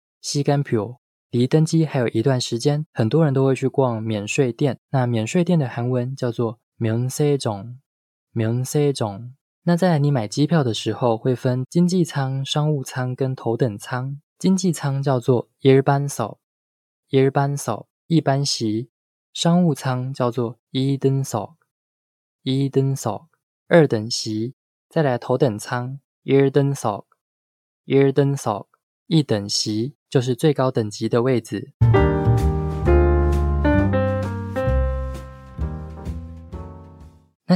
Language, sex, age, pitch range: Korean, male, 20-39, 110-140 Hz